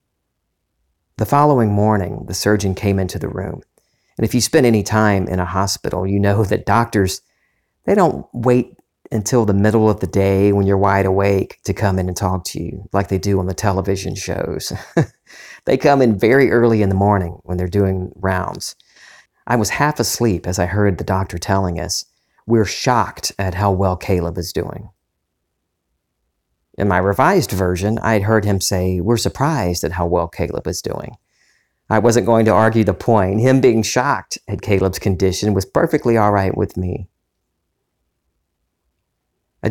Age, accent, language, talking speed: 40-59, American, English, 175 wpm